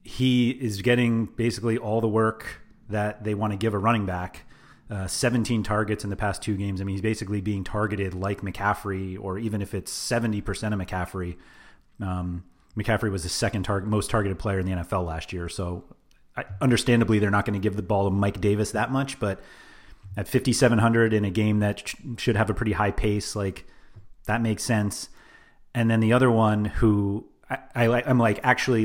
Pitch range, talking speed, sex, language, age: 95-115 Hz, 200 wpm, male, English, 30-49